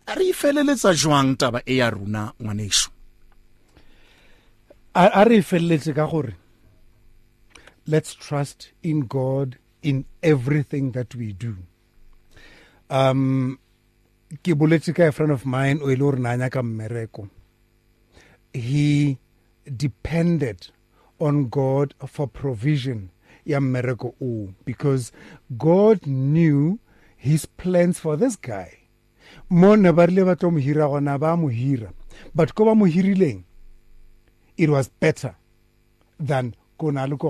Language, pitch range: English, 115-165 Hz